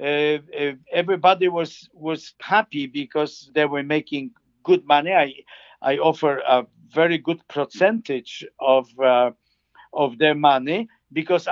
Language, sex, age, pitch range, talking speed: English, male, 50-69, 135-175 Hz, 125 wpm